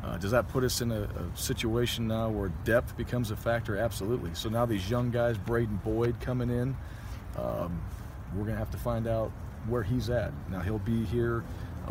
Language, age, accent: English, 40-59, American